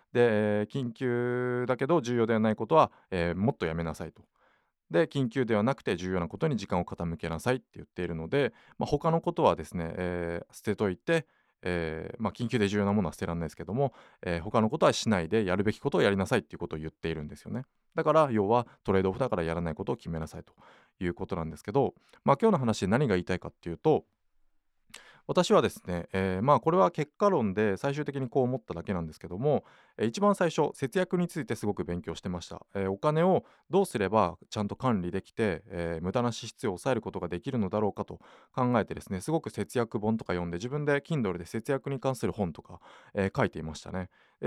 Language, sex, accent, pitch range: Japanese, male, native, 90-130 Hz